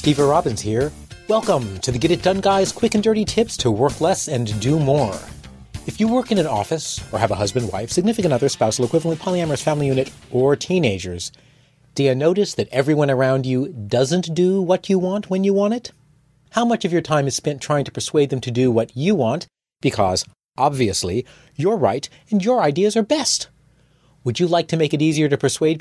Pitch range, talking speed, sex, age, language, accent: 120-180 Hz, 210 wpm, male, 30-49, English, American